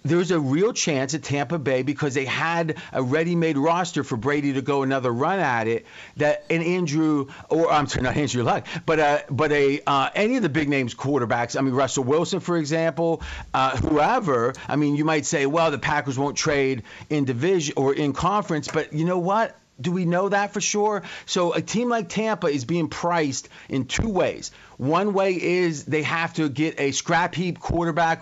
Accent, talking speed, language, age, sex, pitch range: American, 205 wpm, English, 40-59, male, 140-175 Hz